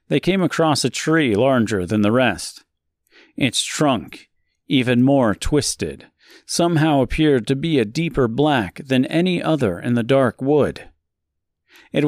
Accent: American